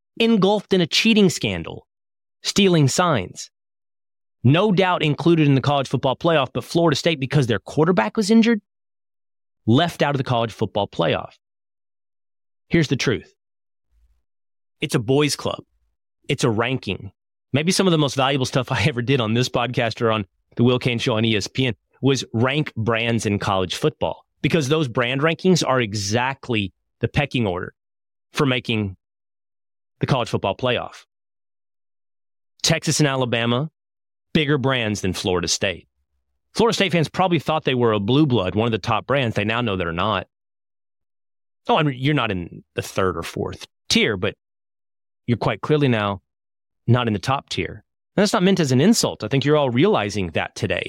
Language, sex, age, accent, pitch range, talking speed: English, male, 30-49, American, 100-150 Hz, 170 wpm